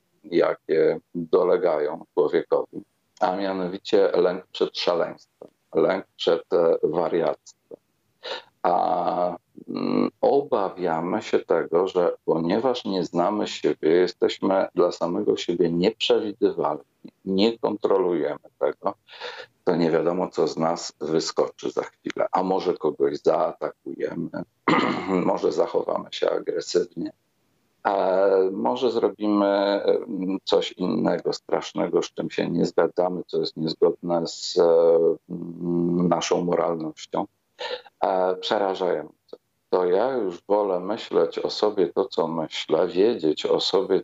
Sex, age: male, 50-69